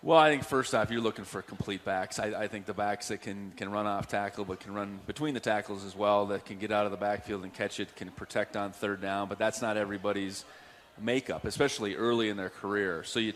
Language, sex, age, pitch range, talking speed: English, male, 30-49, 100-110 Hz, 250 wpm